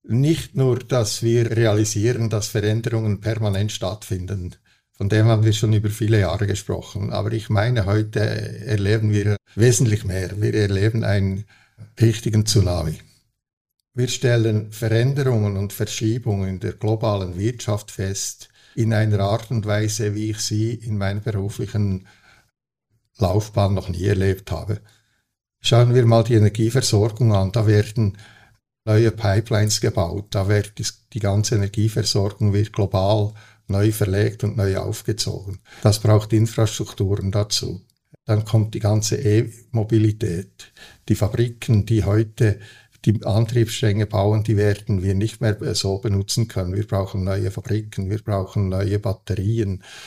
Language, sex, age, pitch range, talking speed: German, male, 60-79, 100-115 Hz, 135 wpm